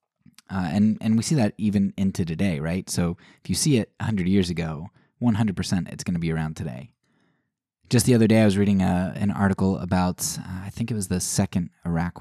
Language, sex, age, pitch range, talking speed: English, male, 20-39, 85-100 Hz, 215 wpm